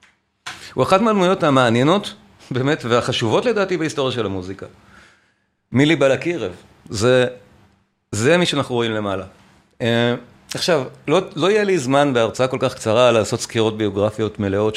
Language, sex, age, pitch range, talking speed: Hebrew, male, 40-59, 110-155 Hz, 130 wpm